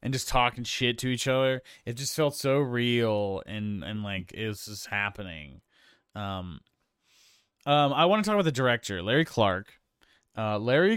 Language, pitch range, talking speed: English, 100-130 Hz, 175 wpm